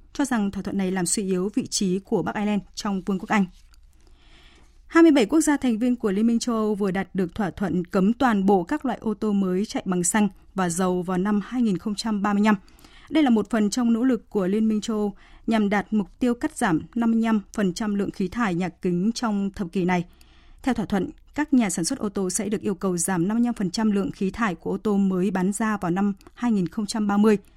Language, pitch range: Vietnamese, 190-235 Hz